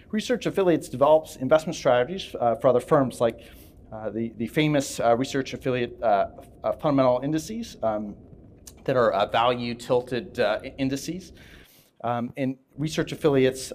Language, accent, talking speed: English, American, 145 wpm